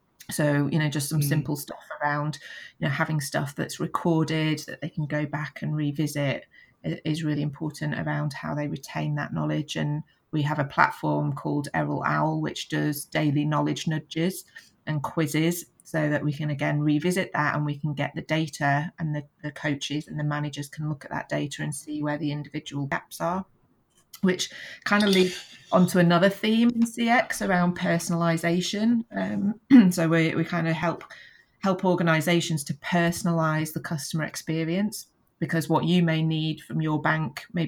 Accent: British